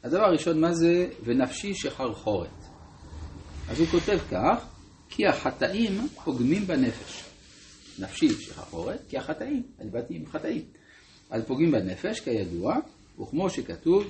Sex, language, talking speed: male, Hebrew, 110 wpm